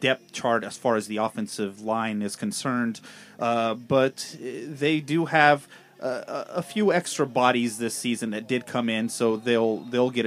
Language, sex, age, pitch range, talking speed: English, male, 30-49, 110-135 Hz, 175 wpm